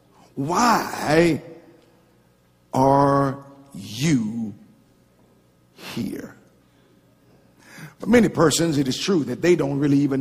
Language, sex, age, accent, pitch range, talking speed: English, male, 50-69, American, 125-165 Hz, 90 wpm